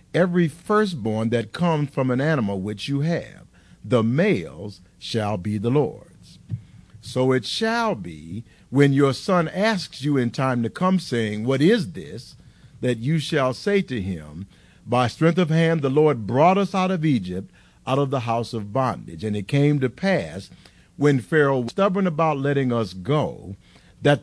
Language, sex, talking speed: English, male, 175 wpm